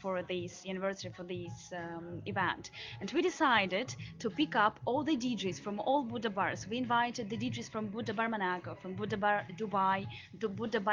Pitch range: 200-245 Hz